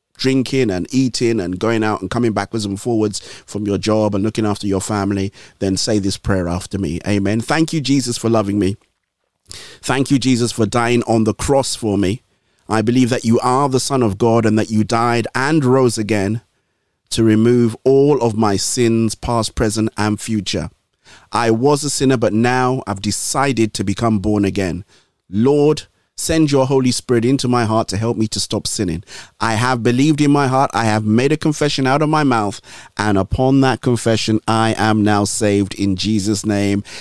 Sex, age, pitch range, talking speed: male, 30-49, 105-125 Hz, 195 wpm